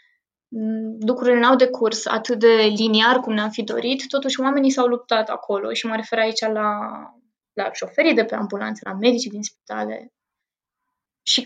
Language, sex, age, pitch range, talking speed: Romanian, female, 20-39, 215-250 Hz, 170 wpm